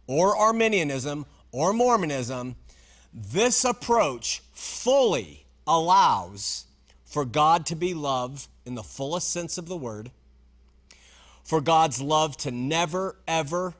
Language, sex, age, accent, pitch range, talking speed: English, male, 40-59, American, 130-190 Hz, 115 wpm